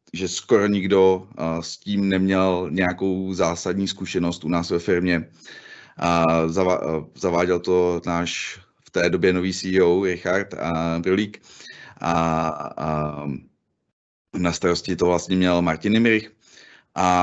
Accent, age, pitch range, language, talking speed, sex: native, 30-49, 90-100 Hz, Czech, 120 wpm, male